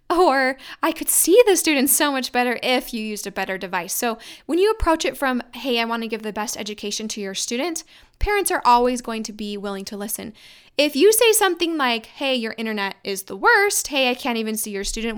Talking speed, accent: 235 wpm, American